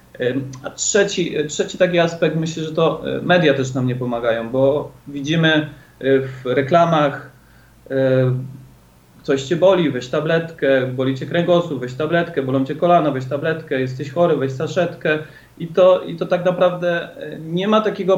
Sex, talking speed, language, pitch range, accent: male, 150 wpm, Polish, 140-170 Hz, native